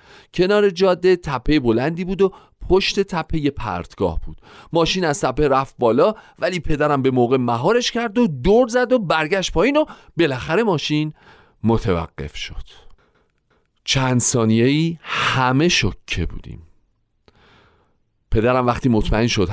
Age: 40-59